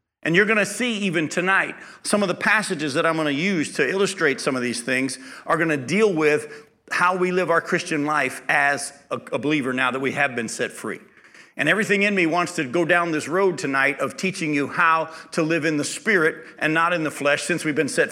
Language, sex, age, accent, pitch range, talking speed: English, male, 50-69, American, 150-190 Hz, 240 wpm